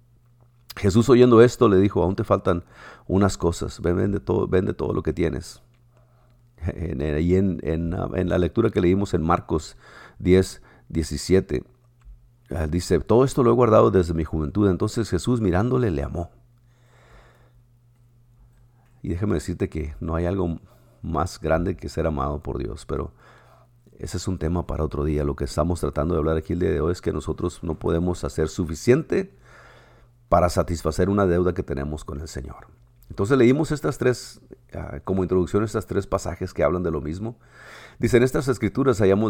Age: 50-69